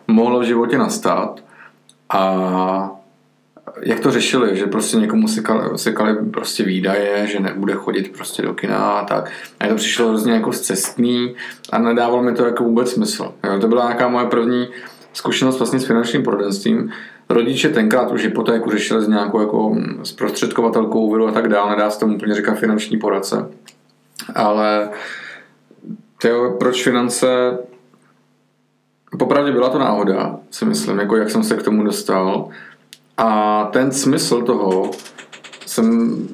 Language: Czech